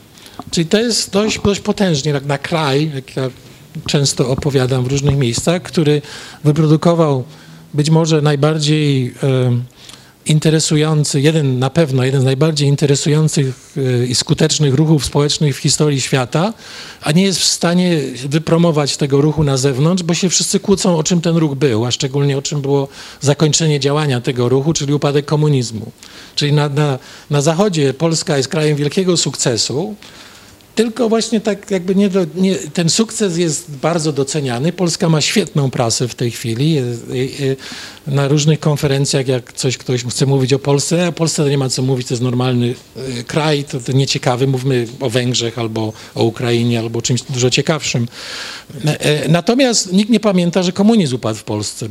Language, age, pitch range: Polish, 40-59, 135-165 Hz